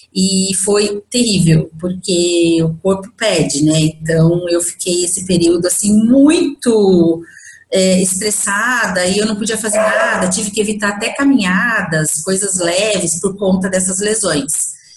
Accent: Brazilian